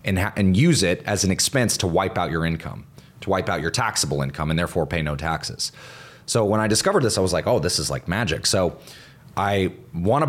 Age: 30-49